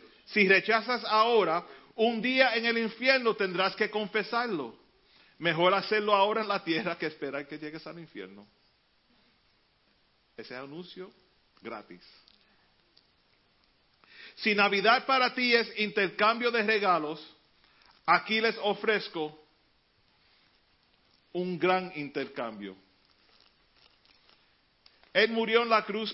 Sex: male